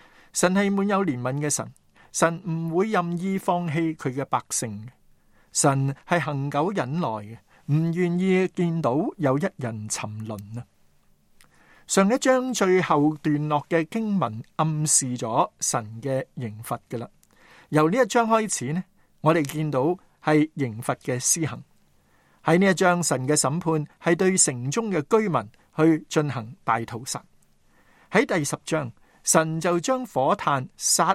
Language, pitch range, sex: Chinese, 125-175 Hz, male